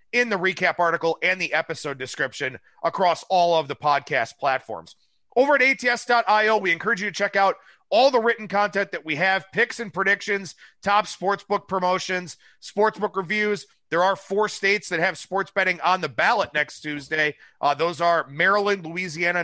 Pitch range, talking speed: 165-205 Hz, 175 wpm